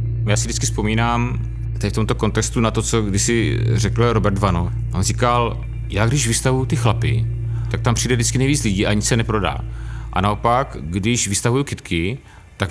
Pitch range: 90-115 Hz